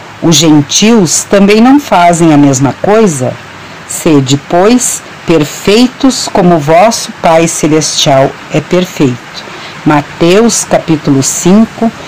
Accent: Brazilian